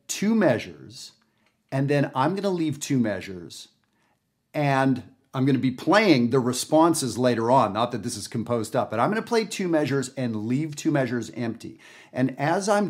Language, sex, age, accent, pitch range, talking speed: English, male, 50-69, American, 120-155 Hz, 190 wpm